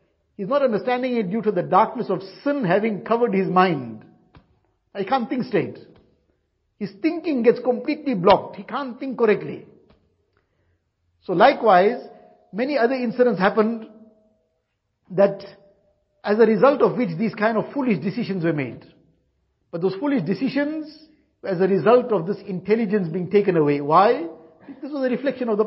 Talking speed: 155 wpm